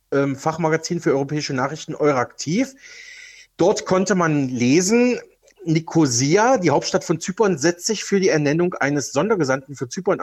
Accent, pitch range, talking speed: German, 150-195 Hz, 135 wpm